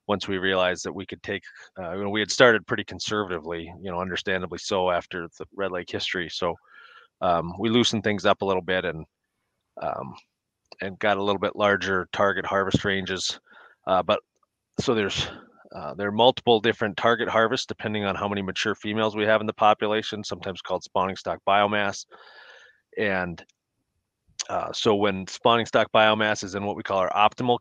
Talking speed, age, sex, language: 185 wpm, 30-49, male, English